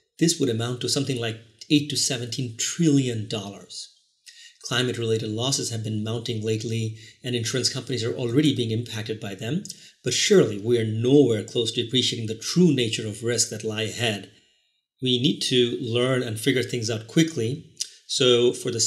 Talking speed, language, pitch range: 170 wpm, English, 115-135 Hz